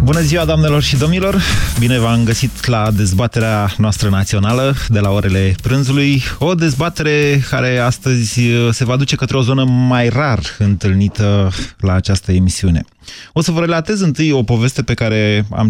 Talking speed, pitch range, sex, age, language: 160 wpm, 100-145 Hz, male, 30-49, Romanian